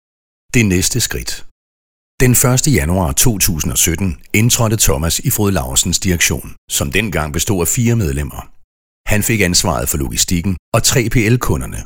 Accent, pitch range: native, 75-115 Hz